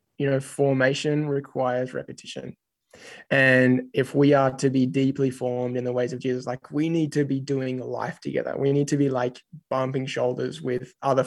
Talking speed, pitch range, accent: 185 wpm, 130-150 Hz, Australian